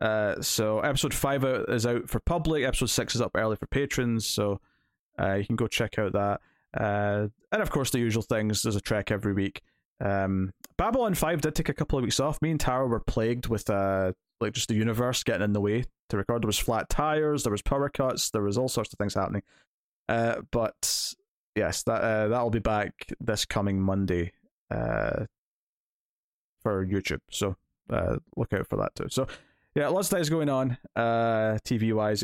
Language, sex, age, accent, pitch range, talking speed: English, male, 20-39, British, 100-125 Hz, 200 wpm